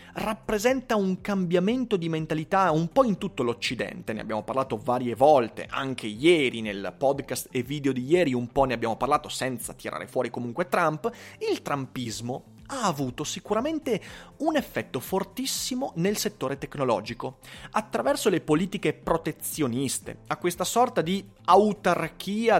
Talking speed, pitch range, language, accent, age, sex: 140 wpm, 125-195 Hz, Italian, native, 30-49, male